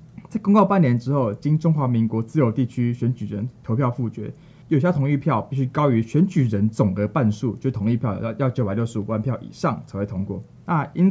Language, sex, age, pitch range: Chinese, male, 20-39, 115-150 Hz